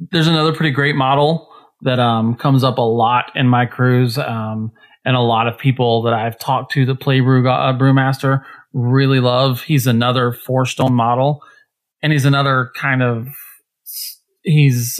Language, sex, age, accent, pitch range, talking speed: English, male, 30-49, American, 125-150 Hz, 170 wpm